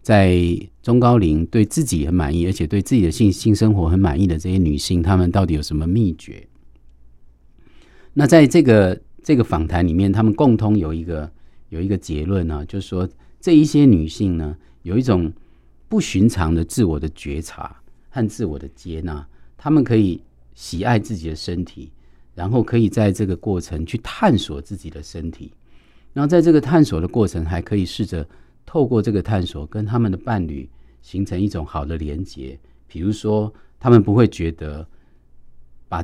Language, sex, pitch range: Chinese, male, 75-105 Hz